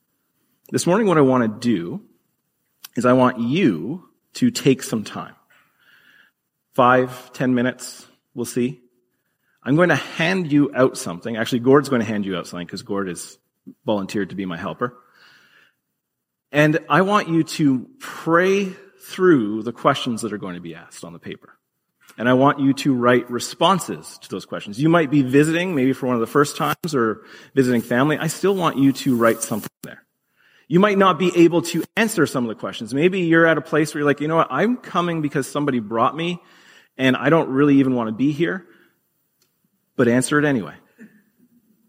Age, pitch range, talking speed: 30-49, 120-160 Hz, 190 wpm